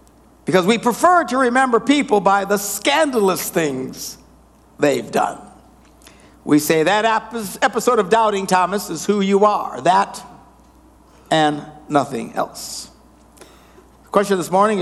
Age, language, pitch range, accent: 60-79, English, 180-240 Hz, American